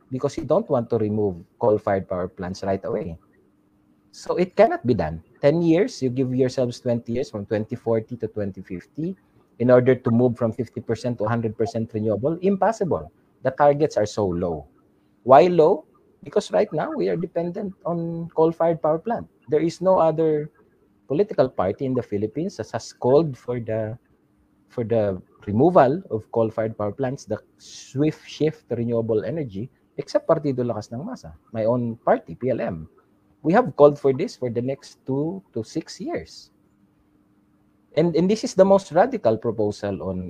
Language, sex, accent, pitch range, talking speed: English, male, Filipino, 105-155 Hz, 165 wpm